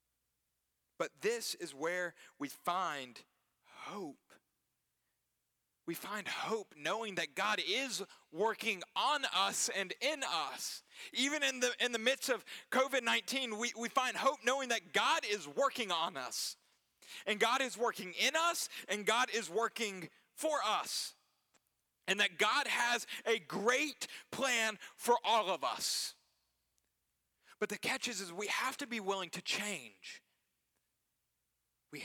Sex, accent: male, American